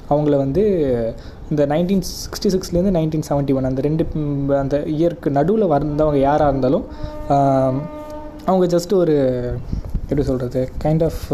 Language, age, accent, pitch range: Tamil, 20-39, native, 140-175 Hz